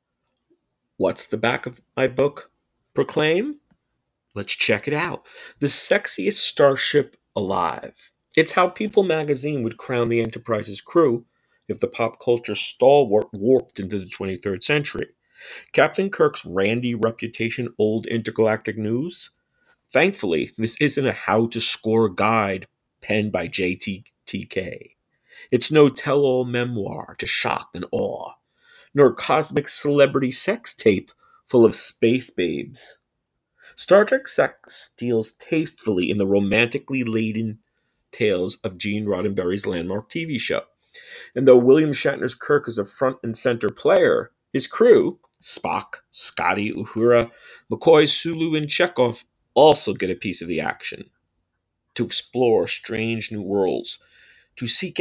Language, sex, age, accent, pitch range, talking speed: English, male, 40-59, American, 110-145 Hz, 125 wpm